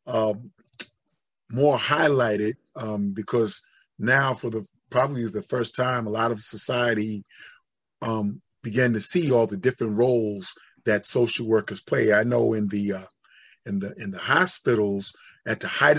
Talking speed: 160 wpm